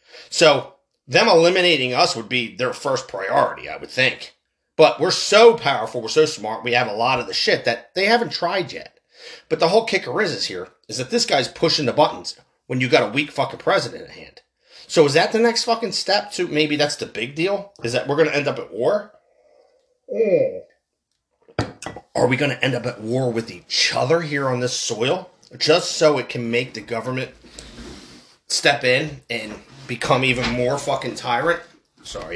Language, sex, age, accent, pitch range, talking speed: English, male, 30-49, American, 120-175 Hz, 200 wpm